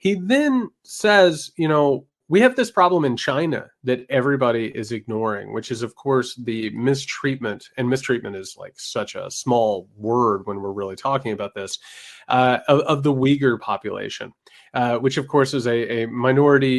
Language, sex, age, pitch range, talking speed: English, male, 30-49, 110-140 Hz, 175 wpm